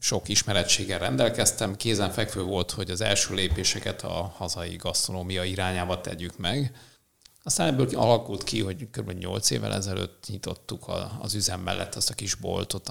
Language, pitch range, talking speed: Hungarian, 95-110 Hz, 150 wpm